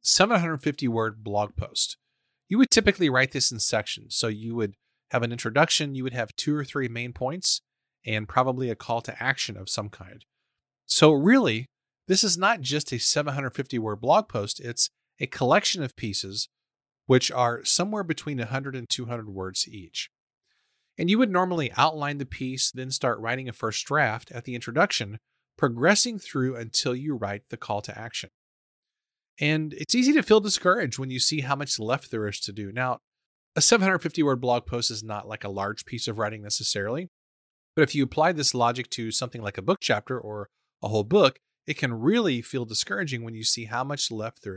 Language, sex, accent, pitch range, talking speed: English, male, American, 115-155 Hz, 190 wpm